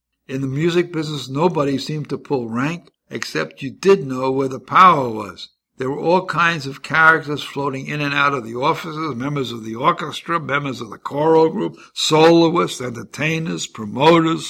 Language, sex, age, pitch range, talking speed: English, male, 60-79, 130-155 Hz, 175 wpm